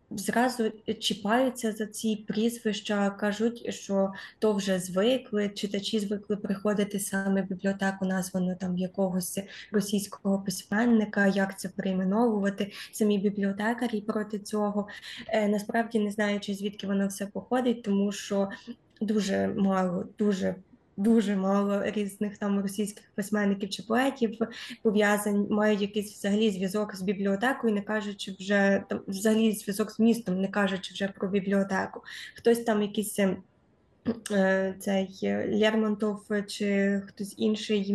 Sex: female